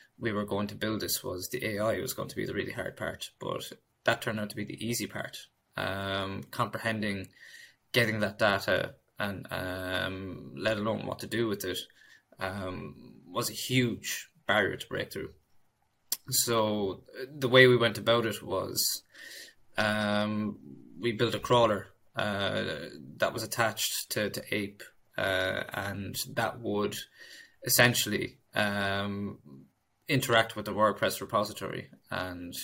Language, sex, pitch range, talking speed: English, male, 95-115 Hz, 145 wpm